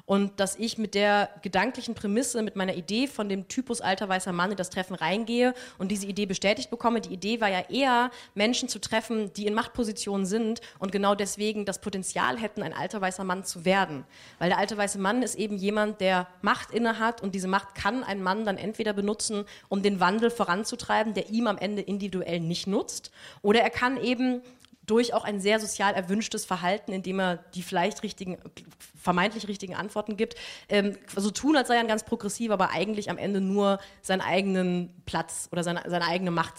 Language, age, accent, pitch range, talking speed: German, 30-49, German, 185-220 Hz, 200 wpm